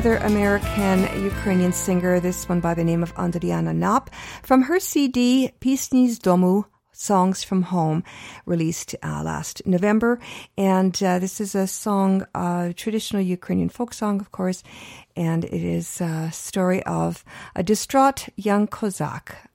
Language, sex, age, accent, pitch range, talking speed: English, female, 50-69, American, 165-215 Hz, 145 wpm